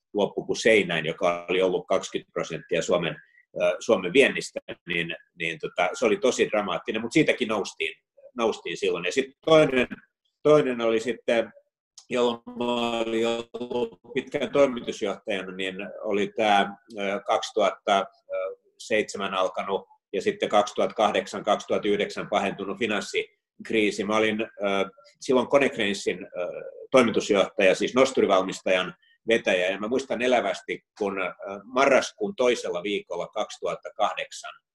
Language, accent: Finnish, native